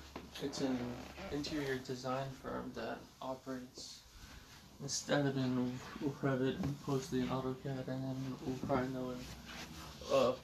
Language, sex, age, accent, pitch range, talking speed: English, male, 20-39, American, 125-135 Hz, 120 wpm